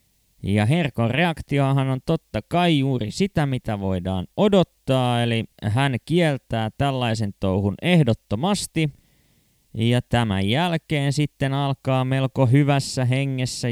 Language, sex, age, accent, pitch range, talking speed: Finnish, male, 20-39, native, 110-140 Hz, 110 wpm